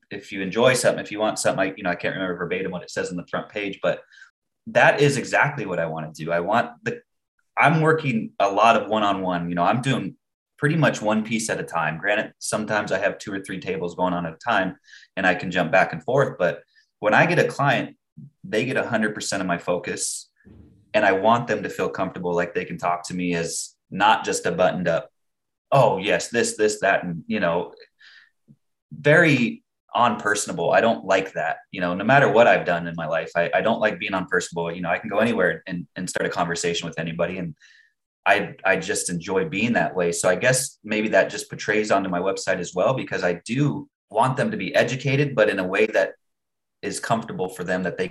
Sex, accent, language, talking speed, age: male, American, English, 230 wpm, 20-39